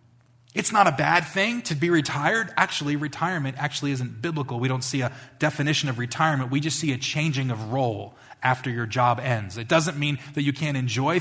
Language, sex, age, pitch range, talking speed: English, male, 30-49, 120-140 Hz, 205 wpm